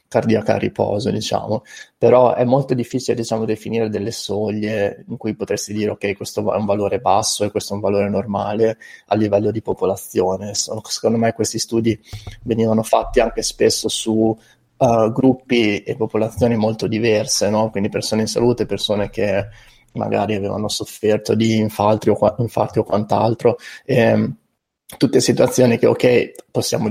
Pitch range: 105-115 Hz